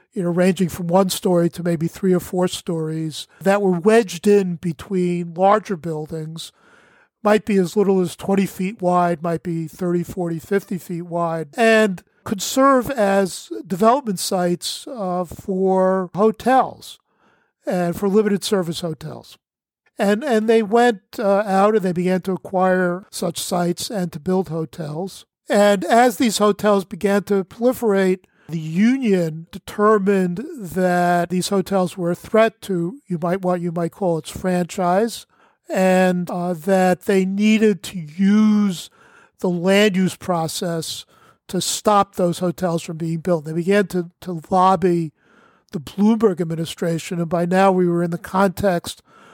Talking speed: 150 wpm